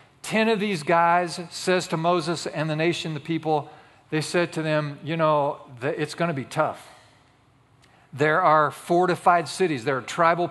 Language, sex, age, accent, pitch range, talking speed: English, male, 40-59, American, 150-195 Hz, 170 wpm